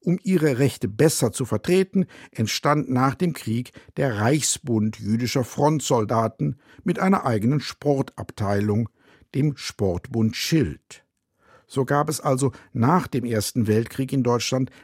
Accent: German